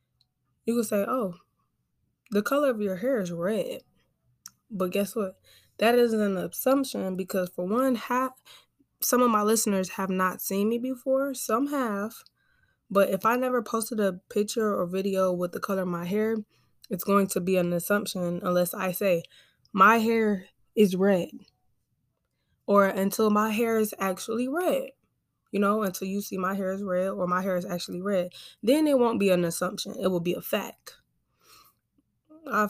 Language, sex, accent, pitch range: English, female, American, 180-220 Hz